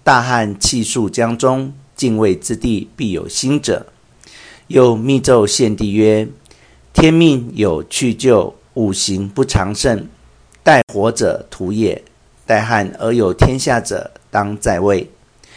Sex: male